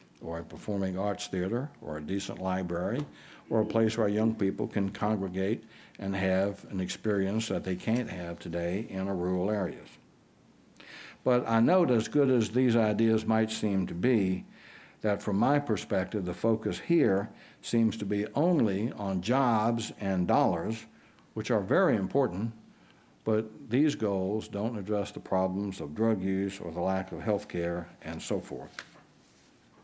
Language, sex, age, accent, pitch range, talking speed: English, male, 60-79, American, 95-120 Hz, 160 wpm